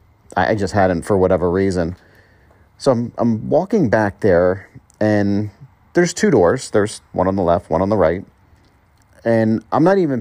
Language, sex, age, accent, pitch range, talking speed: English, male, 40-59, American, 90-115 Hz, 170 wpm